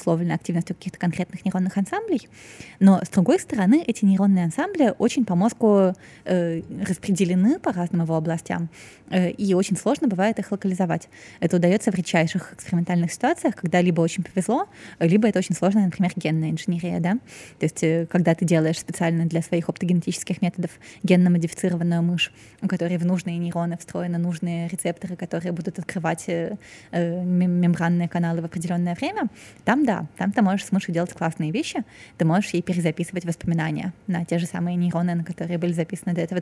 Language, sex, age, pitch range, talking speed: Russian, female, 20-39, 170-195 Hz, 170 wpm